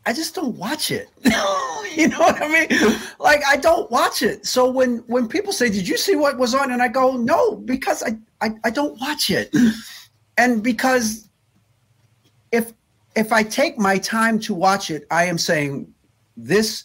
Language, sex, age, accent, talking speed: English, male, 50-69, American, 185 wpm